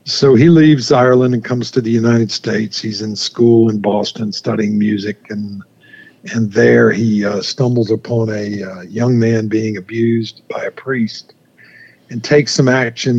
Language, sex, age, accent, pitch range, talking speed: English, male, 50-69, American, 110-130 Hz, 170 wpm